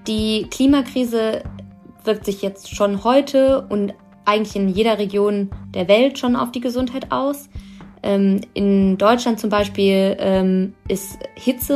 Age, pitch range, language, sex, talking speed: 20-39, 185-210 Hz, German, female, 140 wpm